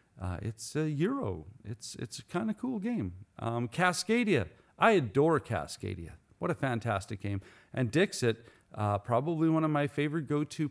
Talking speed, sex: 165 wpm, male